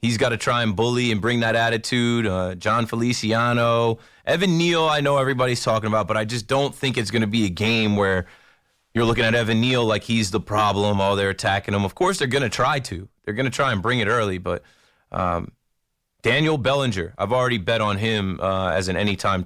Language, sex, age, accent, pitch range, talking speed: English, male, 30-49, American, 105-135 Hz, 225 wpm